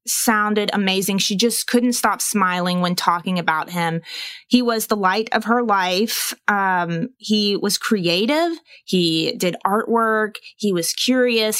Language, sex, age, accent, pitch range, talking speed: English, female, 20-39, American, 180-215 Hz, 145 wpm